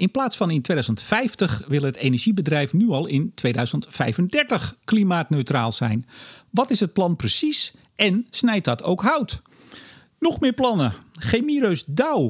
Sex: male